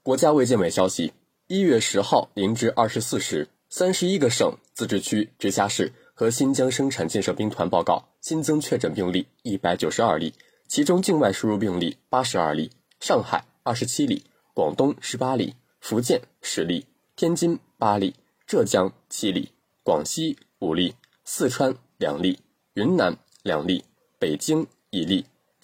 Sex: male